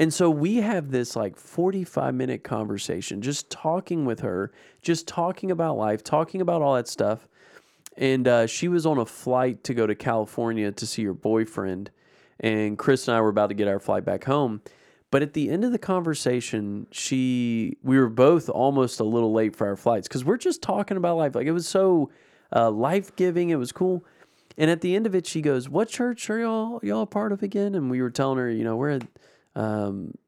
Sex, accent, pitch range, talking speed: male, American, 115-170 Hz, 215 wpm